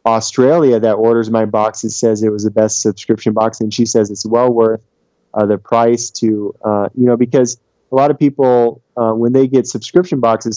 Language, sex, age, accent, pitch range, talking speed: English, male, 20-39, American, 110-130 Hz, 205 wpm